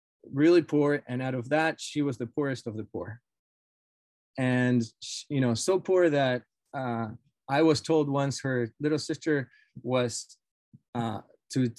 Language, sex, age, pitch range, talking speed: English, male, 20-39, 115-150 Hz, 155 wpm